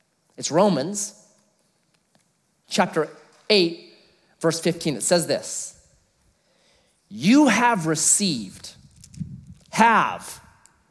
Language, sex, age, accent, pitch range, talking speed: English, male, 30-49, American, 155-215 Hz, 70 wpm